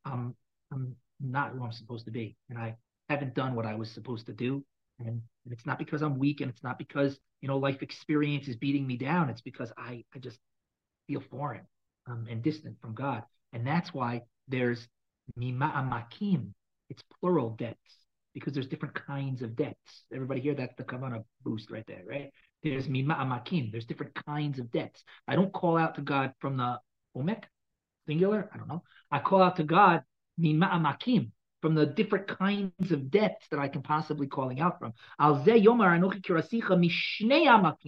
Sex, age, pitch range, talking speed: male, 40-59, 125-175 Hz, 175 wpm